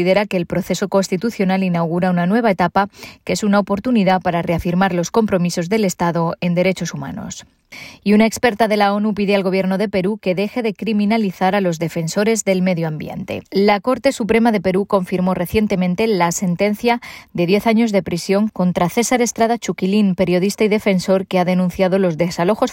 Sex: female